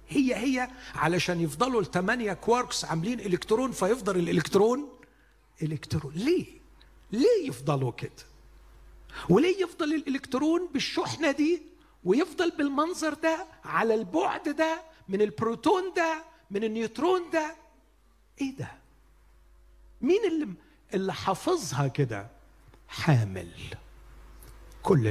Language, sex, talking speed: Arabic, male, 100 wpm